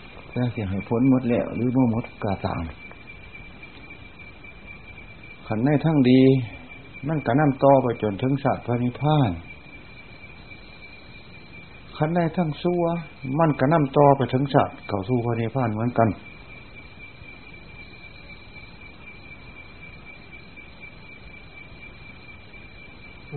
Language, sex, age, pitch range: Thai, male, 60-79, 100-130 Hz